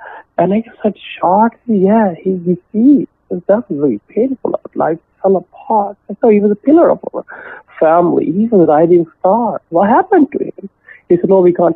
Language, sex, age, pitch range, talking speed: English, male, 50-69, 135-210 Hz, 200 wpm